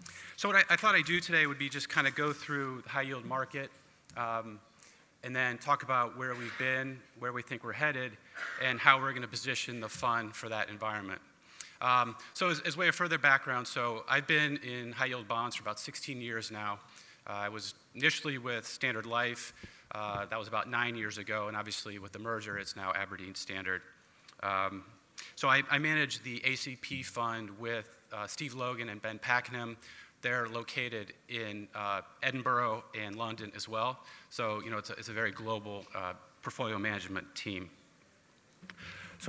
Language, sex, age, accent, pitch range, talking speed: English, male, 30-49, American, 110-135 Hz, 185 wpm